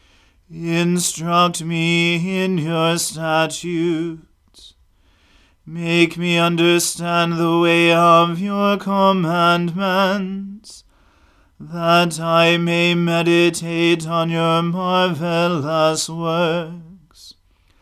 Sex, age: male, 40-59